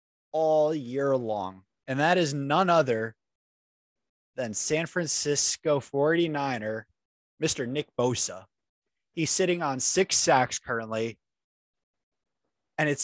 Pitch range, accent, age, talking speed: 110-140 Hz, American, 20-39, 105 wpm